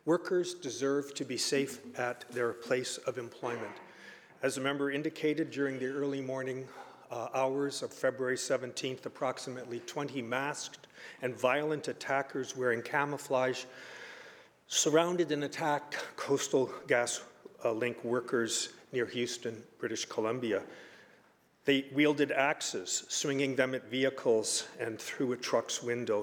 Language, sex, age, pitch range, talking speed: English, male, 50-69, 130-155 Hz, 125 wpm